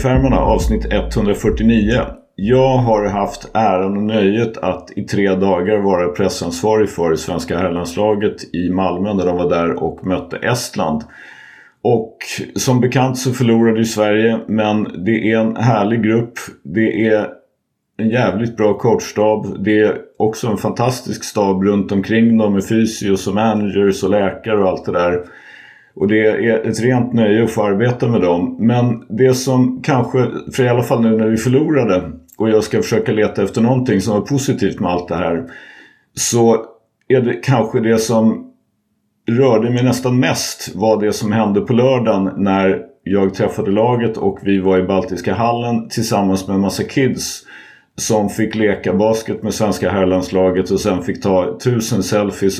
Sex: male